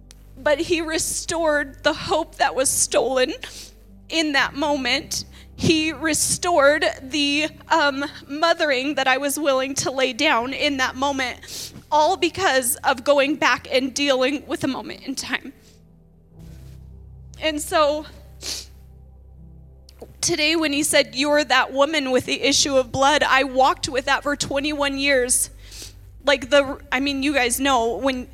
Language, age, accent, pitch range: English, 20-39, American, 240-295 Hz